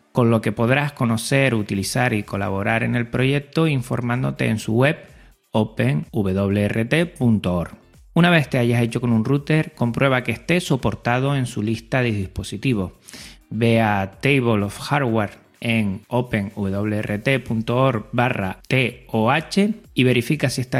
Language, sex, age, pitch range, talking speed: Spanish, male, 30-49, 110-135 Hz, 135 wpm